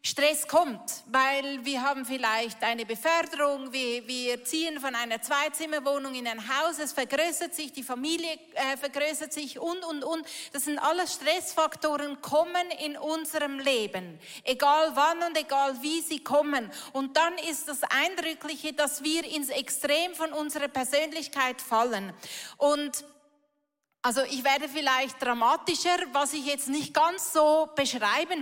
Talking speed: 145 wpm